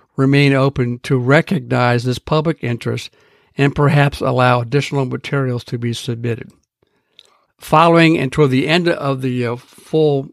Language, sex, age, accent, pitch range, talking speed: English, male, 60-79, American, 125-145 Hz, 140 wpm